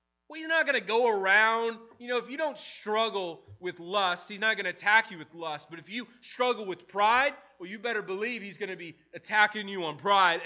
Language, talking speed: English, 235 wpm